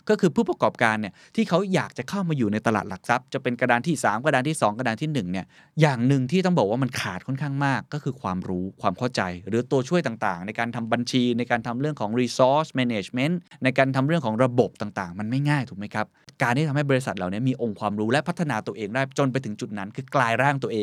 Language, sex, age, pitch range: Thai, male, 20-39, 110-150 Hz